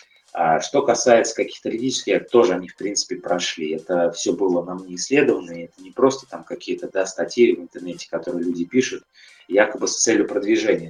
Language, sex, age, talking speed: Russian, male, 20-39, 175 wpm